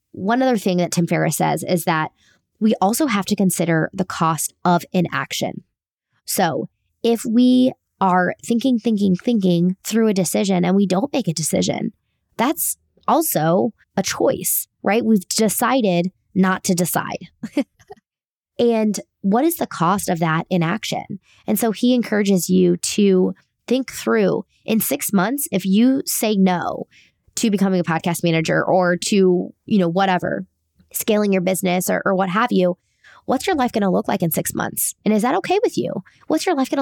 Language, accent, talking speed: English, American, 170 wpm